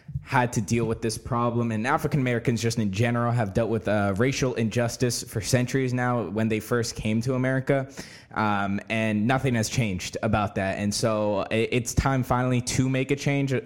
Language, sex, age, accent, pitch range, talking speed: English, male, 10-29, American, 110-125 Hz, 185 wpm